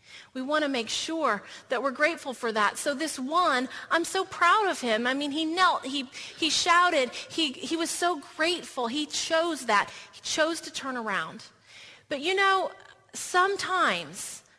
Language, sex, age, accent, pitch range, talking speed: English, female, 30-49, American, 230-310 Hz, 175 wpm